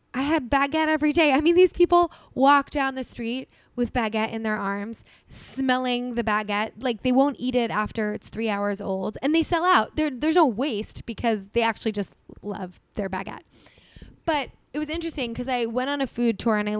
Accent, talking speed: American, 205 wpm